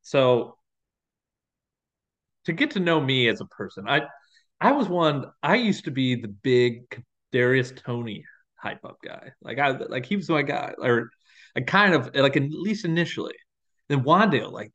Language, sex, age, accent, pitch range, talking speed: English, male, 20-39, American, 120-170 Hz, 175 wpm